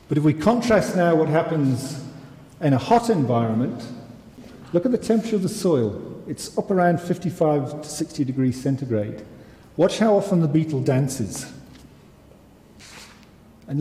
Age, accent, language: 40-59, British, Spanish